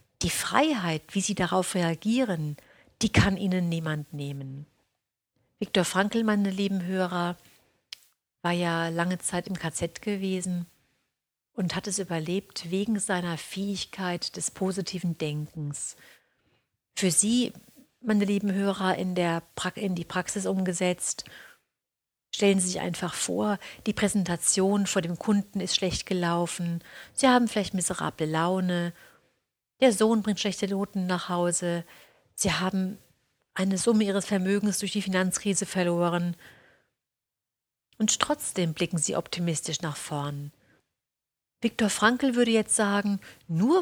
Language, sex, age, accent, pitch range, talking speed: German, female, 50-69, German, 170-205 Hz, 125 wpm